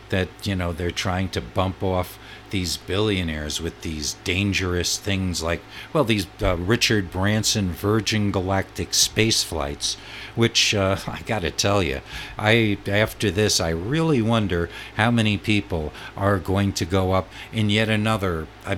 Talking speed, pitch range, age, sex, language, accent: 155 wpm, 90-110 Hz, 60-79, male, English, American